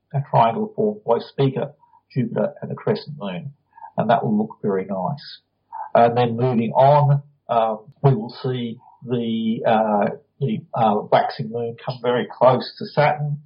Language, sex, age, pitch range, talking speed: English, male, 40-59, 115-155 Hz, 155 wpm